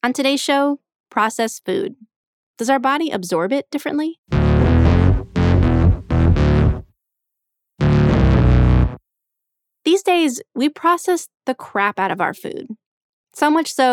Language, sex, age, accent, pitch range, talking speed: English, female, 20-39, American, 195-265 Hz, 105 wpm